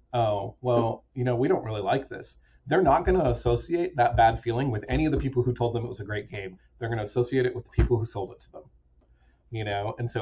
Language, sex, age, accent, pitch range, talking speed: English, male, 30-49, American, 105-125 Hz, 275 wpm